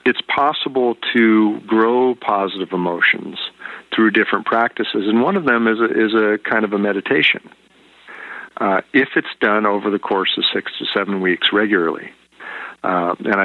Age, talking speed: 50-69, 160 wpm